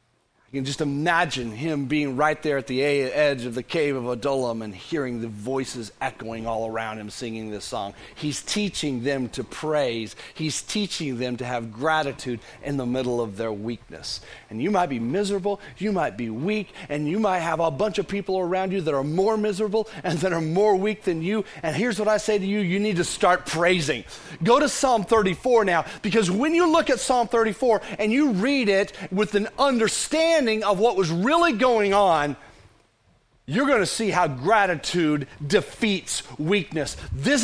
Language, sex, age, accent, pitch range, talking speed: English, male, 40-59, American, 140-215 Hz, 190 wpm